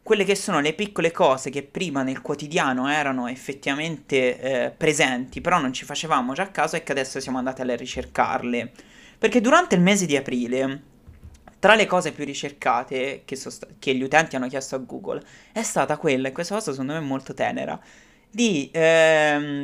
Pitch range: 135-170 Hz